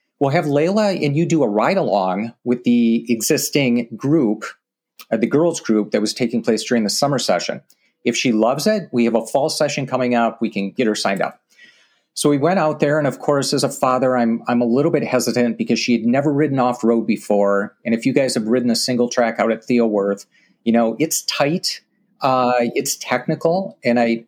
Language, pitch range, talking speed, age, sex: English, 115-145 Hz, 215 wpm, 40-59, male